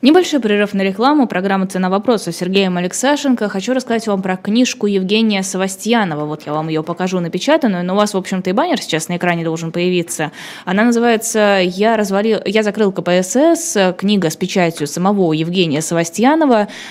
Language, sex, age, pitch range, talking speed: Russian, female, 20-39, 170-210 Hz, 165 wpm